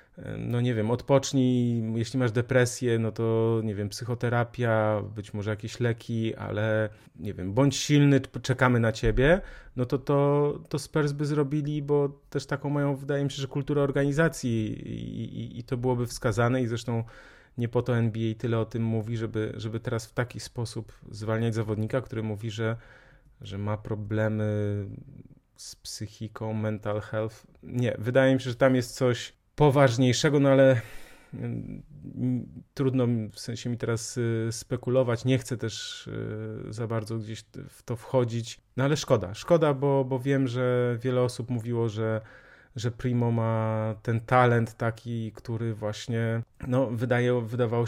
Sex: male